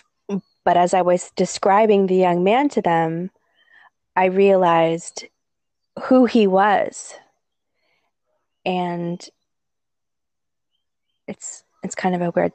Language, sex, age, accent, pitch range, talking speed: English, female, 20-39, American, 170-200 Hz, 105 wpm